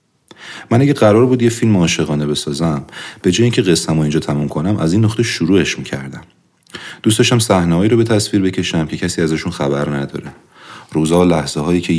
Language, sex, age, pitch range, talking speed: Persian, male, 30-49, 75-90 Hz, 185 wpm